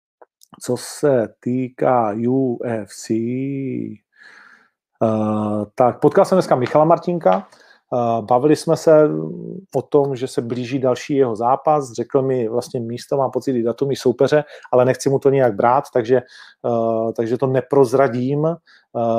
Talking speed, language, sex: 125 wpm, Czech, male